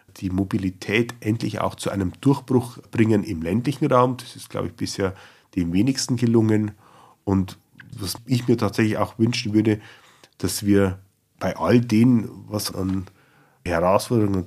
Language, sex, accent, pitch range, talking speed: German, male, German, 95-120 Hz, 145 wpm